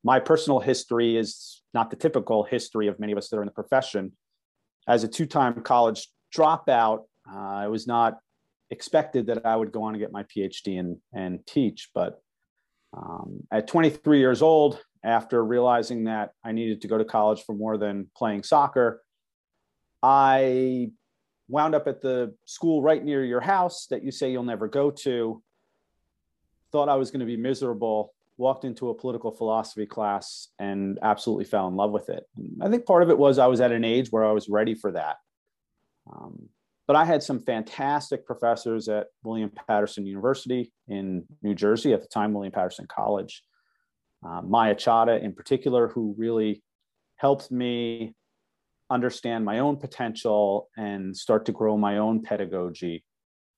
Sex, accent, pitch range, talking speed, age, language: male, American, 105-130 Hz, 170 wpm, 40-59, English